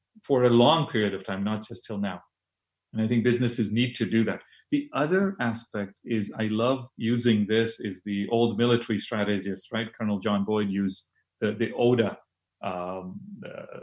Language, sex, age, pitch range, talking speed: English, male, 40-59, 105-135 Hz, 175 wpm